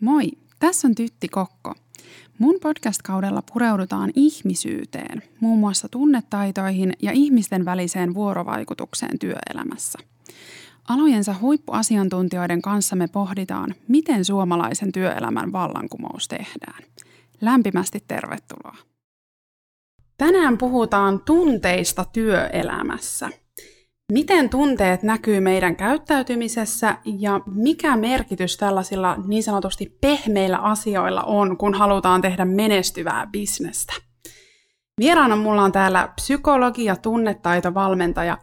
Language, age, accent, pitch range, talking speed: Finnish, 20-39, native, 195-265 Hz, 90 wpm